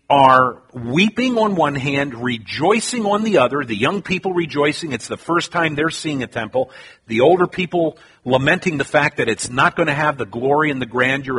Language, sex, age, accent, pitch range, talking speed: Italian, male, 50-69, American, 130-175 Hz, 200 wpm